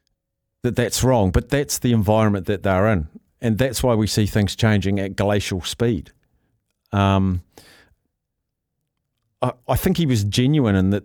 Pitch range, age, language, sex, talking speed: 95-120 Hz, 50-69, English, male, 155 wpm